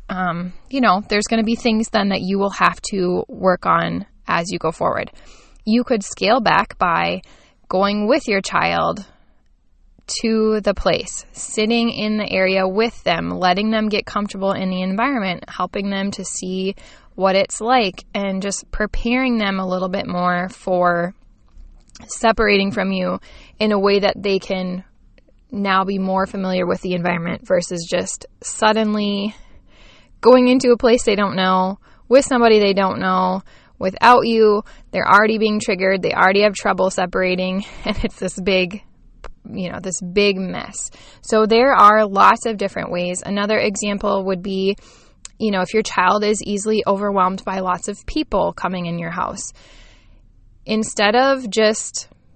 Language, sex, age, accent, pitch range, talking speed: English, female, 10-29, American, 185-215 Hz, 165 wpm